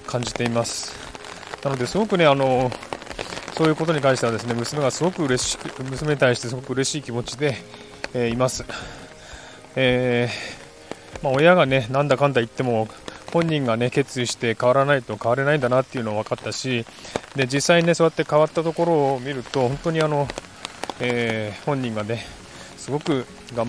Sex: male